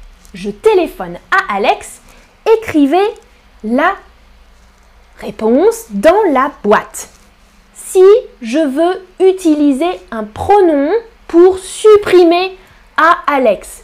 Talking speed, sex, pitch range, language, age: 85 wpm, female, 225-355 Hz, French, 10-29